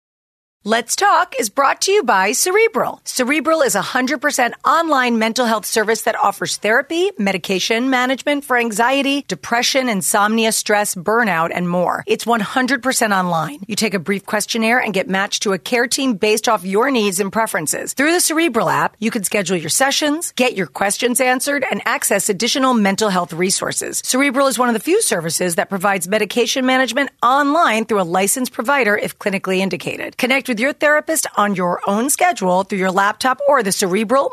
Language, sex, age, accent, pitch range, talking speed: English, female, 40-59, American, 200-270 Hz, 180 wpm